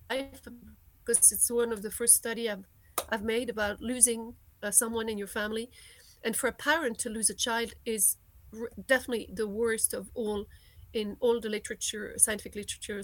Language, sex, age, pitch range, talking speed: English, female, 40-59, 210-255 Hz, 175 wpm